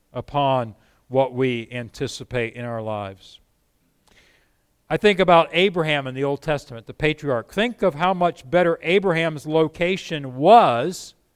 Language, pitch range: English, 130-175 Hz